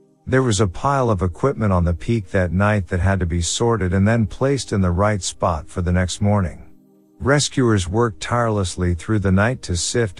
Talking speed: 205 wpm